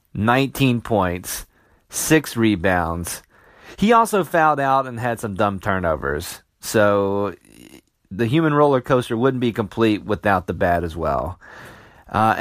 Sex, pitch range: male, 100-135 Hz